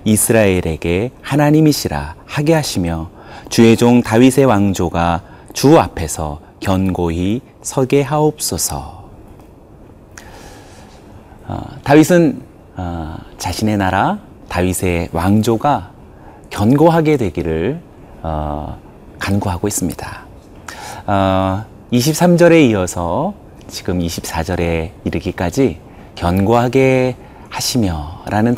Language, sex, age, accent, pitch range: Korean, male, 30-49, native, 90-125 Hz